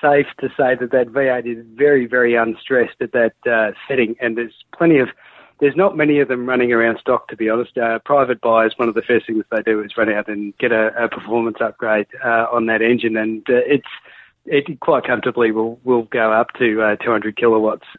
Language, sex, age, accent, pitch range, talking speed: English, male, 40-59, Australian, 115-145 Hz, 220 wpm